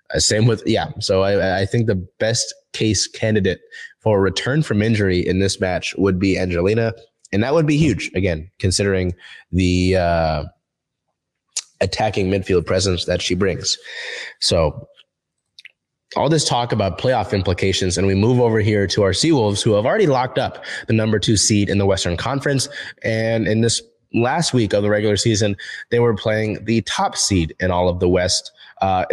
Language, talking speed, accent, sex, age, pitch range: English, 175 wpm, American, male, 20-39, 95-120 Hz